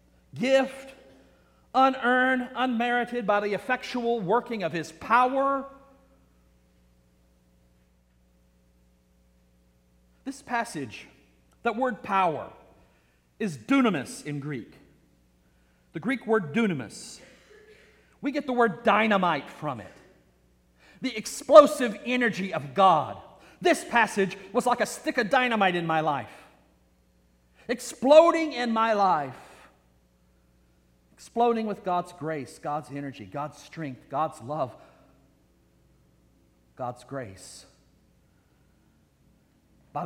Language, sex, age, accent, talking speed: English, male, 40-59, American, 95 wpm